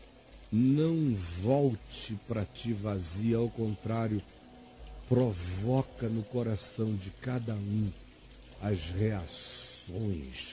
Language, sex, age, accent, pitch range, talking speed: Portuguese, male, 60-79, Brazilian, 95-125 Hz, 85 wpm